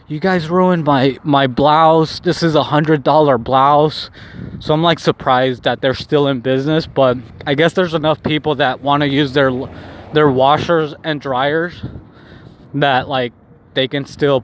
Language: English